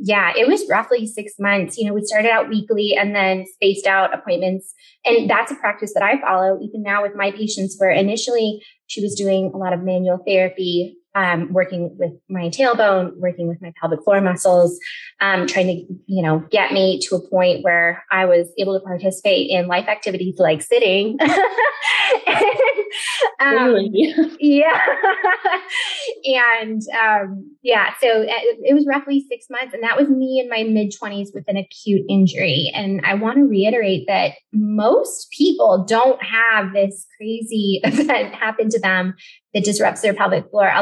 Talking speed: 170 wpm